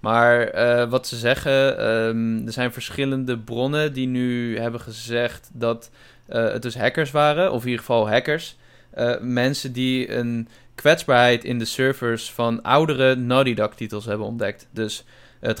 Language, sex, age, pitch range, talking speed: Dutch, male, 20-39, 120-135 Hz, 160 wpm